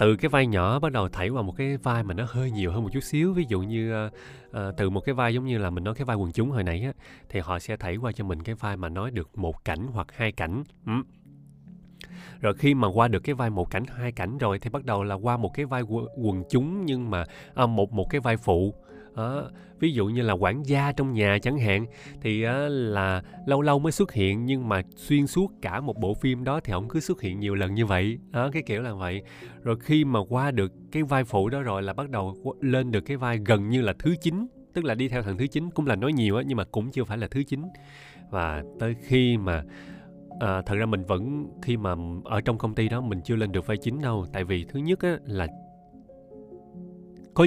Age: 20-39